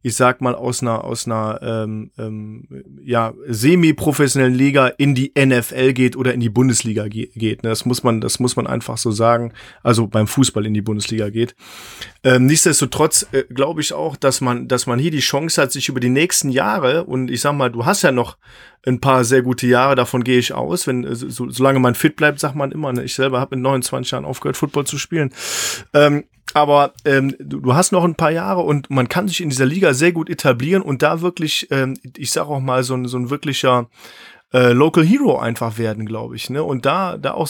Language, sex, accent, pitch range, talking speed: German, male, German, 120-150 Hz, 220 wpm